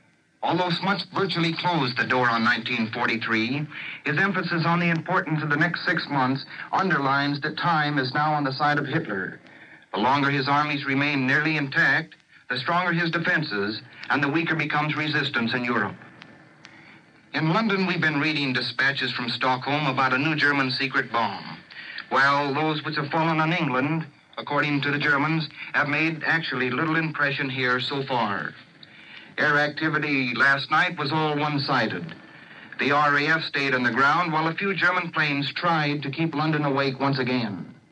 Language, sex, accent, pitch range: English, male, American, 135-160 Hz